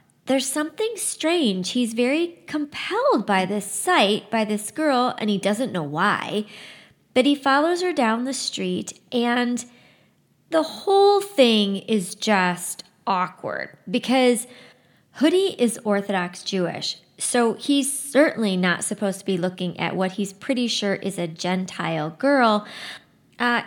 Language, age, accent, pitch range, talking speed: English, 30-49, American, 185-265 Hz, 135 wpm